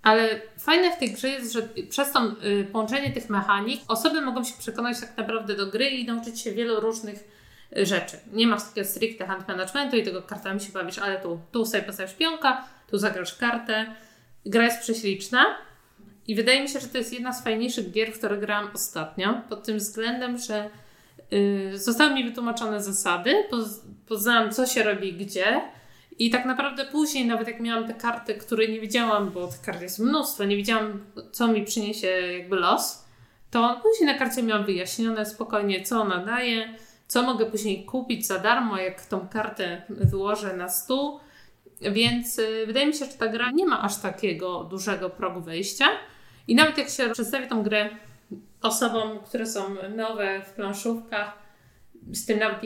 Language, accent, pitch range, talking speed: Polish, native, 200-240 Hz, 170 wpm